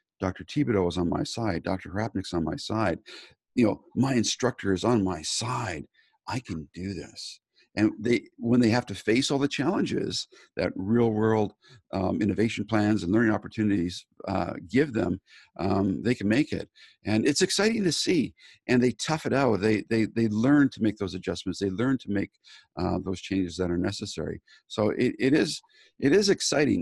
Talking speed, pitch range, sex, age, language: 190 wpm, 100-120 Hz, male, 50-69, English